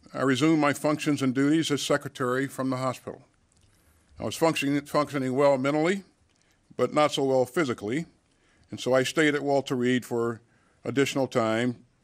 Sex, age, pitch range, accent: male, 50-69, 115-140 Hz, American